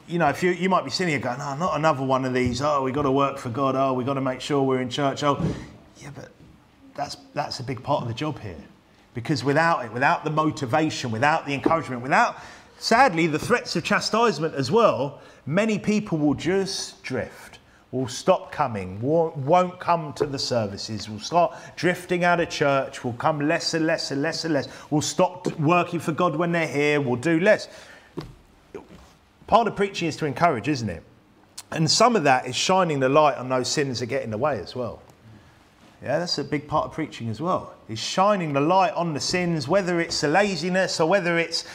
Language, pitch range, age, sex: English, 130-170 Hz, 30-49, male